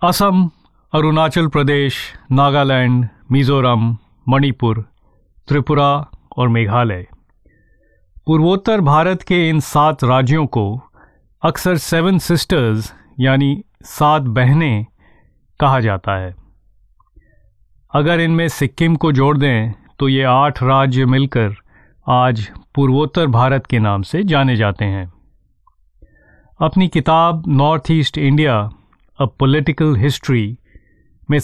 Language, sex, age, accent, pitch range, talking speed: Hindi, male, 40-59, native, 110-150 Hz, 100 wpm